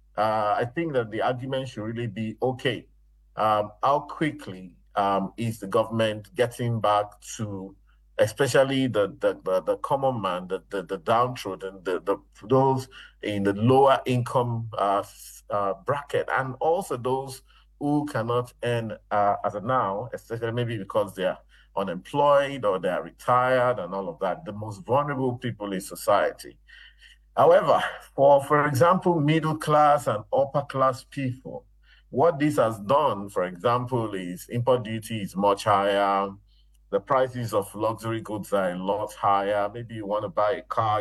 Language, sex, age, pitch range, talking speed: English, male, 50-69, 100-130 Hz, 160 wpm